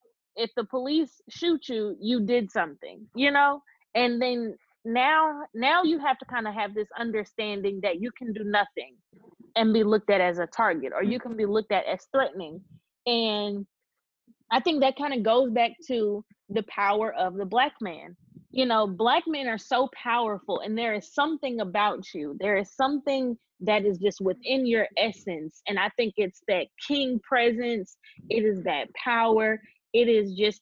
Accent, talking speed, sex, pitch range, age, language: American, 180 wpm, female, 205-265 Hz, 20-39, English